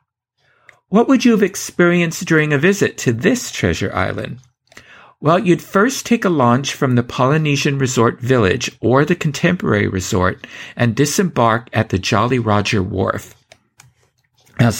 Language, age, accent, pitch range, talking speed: English, 50-69, American, 115-170 Hz, 140 wpm